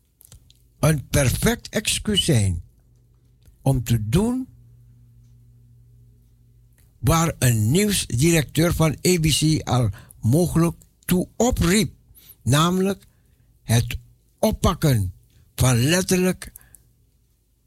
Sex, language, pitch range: male, Dutch, 115-165 Hz